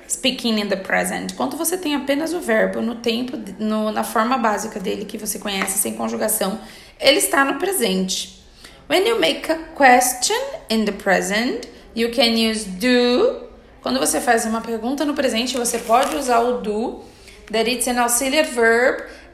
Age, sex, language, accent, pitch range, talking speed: 20-39, female, Portuguese, Brazilian, 215-270 Hz, 170 wpm